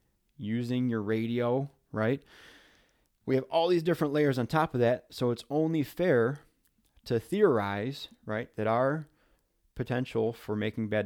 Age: 20-39